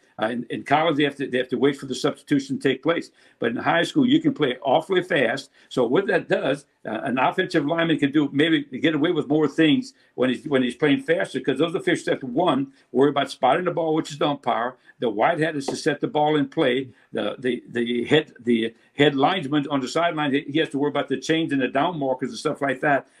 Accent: American